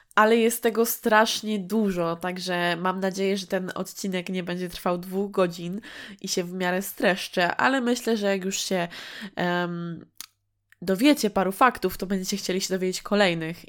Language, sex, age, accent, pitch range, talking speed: Polish, female, 20-39, native, 180-215 Hz, 160 wpm